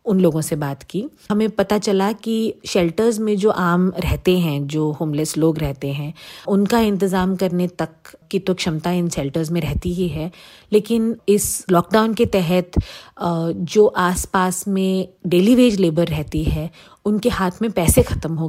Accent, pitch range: native, 165-195 Hz